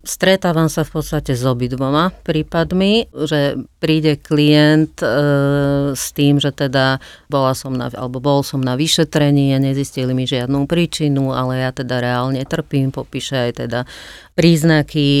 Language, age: Slovak, 40-59